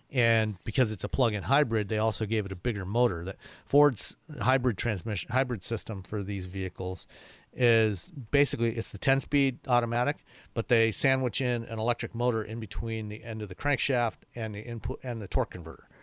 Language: English